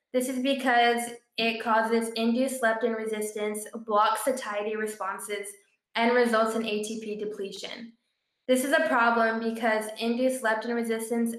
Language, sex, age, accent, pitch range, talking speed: English, female, 10-29, American, 210-235 Hz, 125 wpm